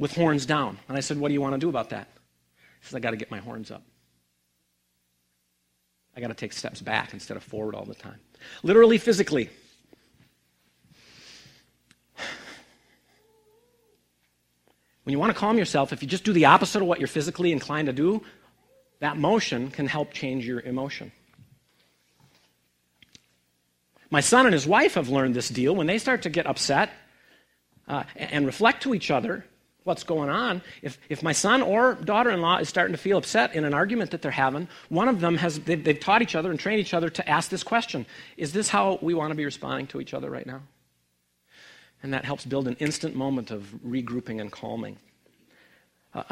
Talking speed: 190 wpm